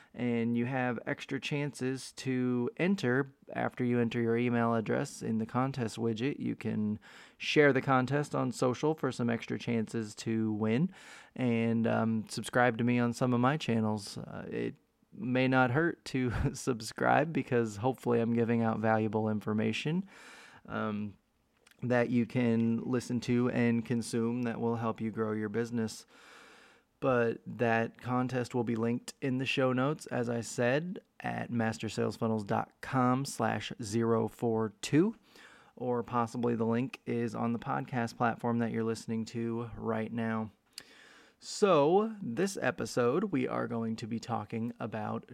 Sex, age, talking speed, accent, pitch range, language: male, 20-39, 145 wpm, American, 115-130 Hz, English